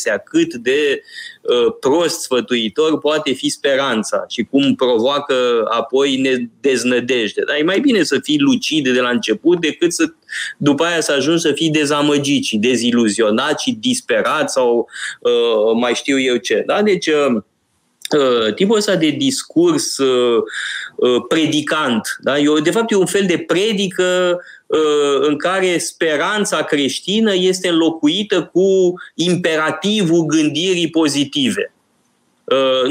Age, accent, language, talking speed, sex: 20-39, native, Romanian, 135 wpm, male